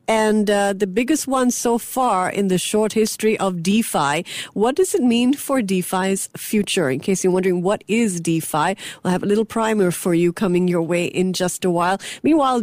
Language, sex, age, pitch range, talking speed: English, female, 40-59, 170-225 Hz, 200 wpm